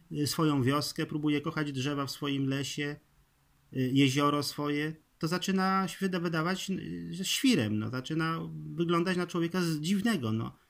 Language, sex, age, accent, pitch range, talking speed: Polish, male, 30-49, native, 130-180 Hz, 125 wpm